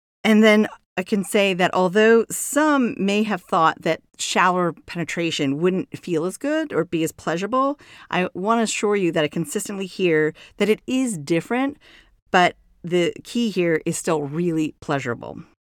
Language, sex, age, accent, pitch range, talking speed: English, female, 40-59, American, 160-200 Hz, 165 wpm